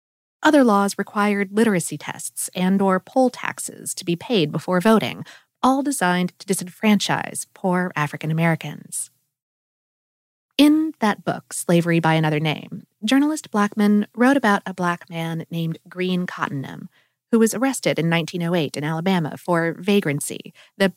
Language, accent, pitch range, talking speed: English, American, 165-220 Hz, 135 wpm